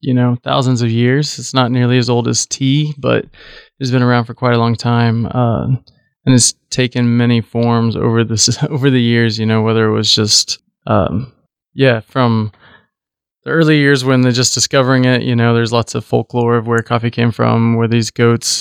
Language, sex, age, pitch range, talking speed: English, male, 20-39, 110-125 Hz, 205 wpm